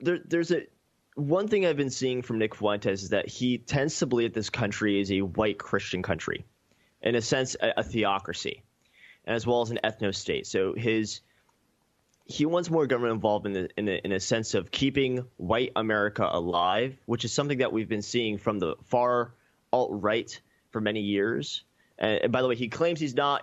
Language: English